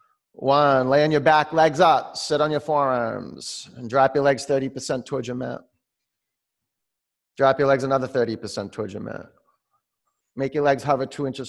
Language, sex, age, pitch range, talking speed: English, male, 40-59, 135-195 Hz, 170 wpm